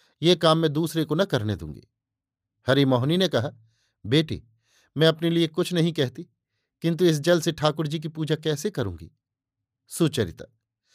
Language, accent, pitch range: Hindi, native, 130-165 Hz